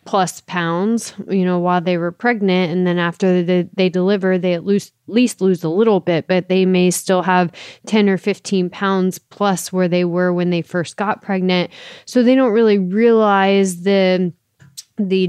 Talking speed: 190 wpm